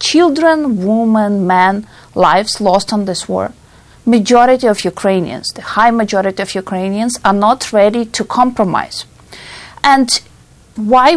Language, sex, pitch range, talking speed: English, female, 200-260 Hz, 125 wpm